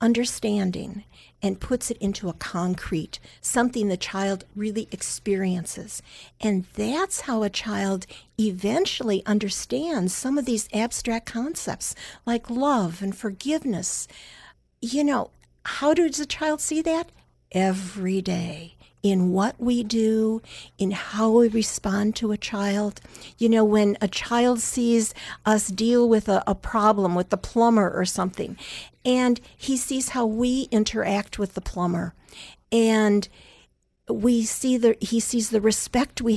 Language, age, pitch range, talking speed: English, 50-69, 195-235 Hz, 140 wpm